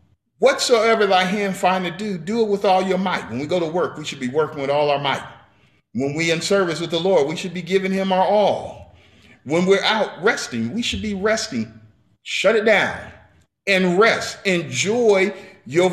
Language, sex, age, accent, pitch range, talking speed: English, male, 40-59, American, 150-215 Hz, 205 wpm